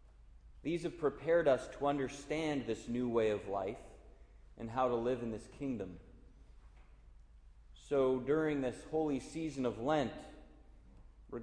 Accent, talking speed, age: American, 135 wpm, 30-49